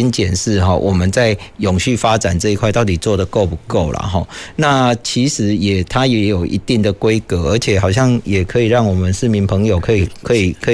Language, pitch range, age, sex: Chinese, 95-120 Hz, 40-59, male